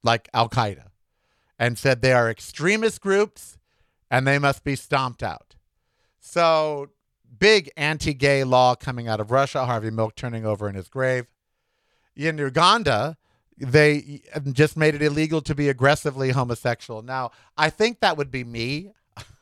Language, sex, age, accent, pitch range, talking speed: English, male, 50-69, American, 120-160 Hz, 145 wpm